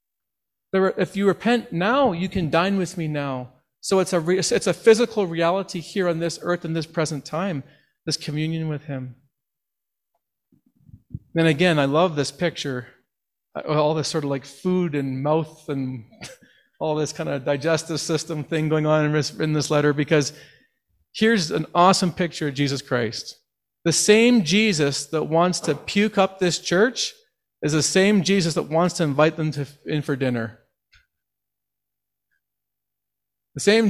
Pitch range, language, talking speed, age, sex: 140-180 Hz, English, 160 wpm, 40-59, male